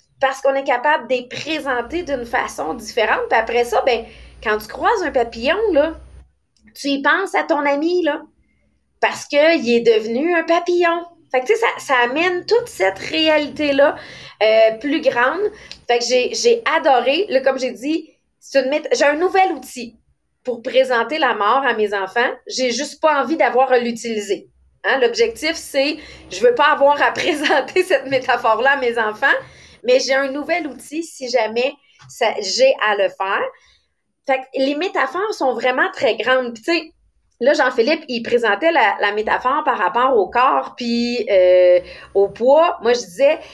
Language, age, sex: English, 30-49, female